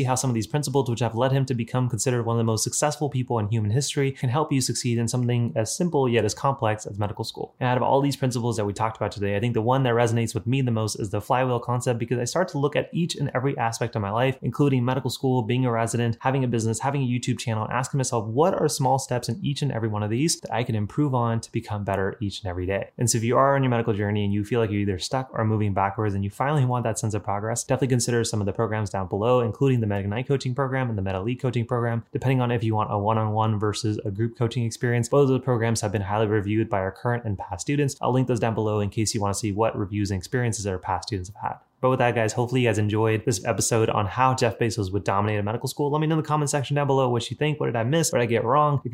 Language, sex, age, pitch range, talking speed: English, male, 20-39, 110-130 Hz, 300 wpm